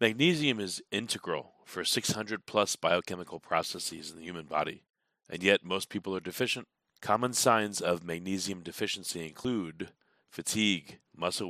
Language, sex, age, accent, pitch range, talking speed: English, male, 40-59, American, 85-105 Hz, 130 wpm